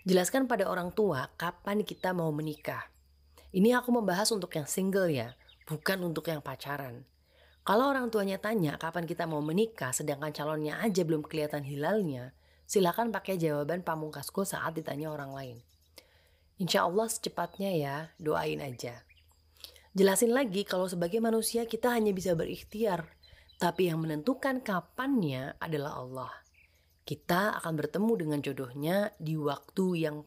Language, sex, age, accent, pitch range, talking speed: Indonesian, female, 30-49, native, 145-200 Hz, 140 wpm